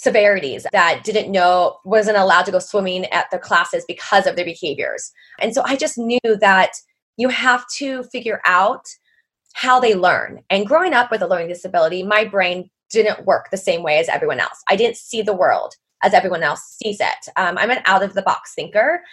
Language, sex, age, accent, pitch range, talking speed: English, female, 20-39, American, 195-260 Hz, 195 wpm